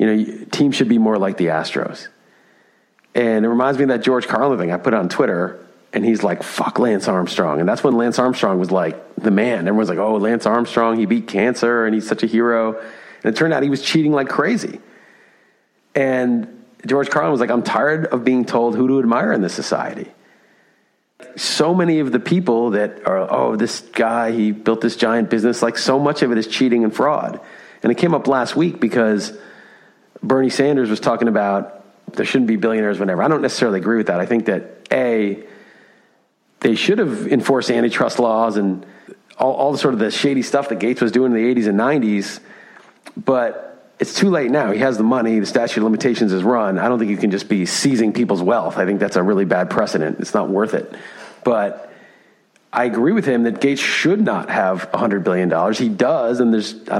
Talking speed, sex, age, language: 215 wpm, male, 40-59, English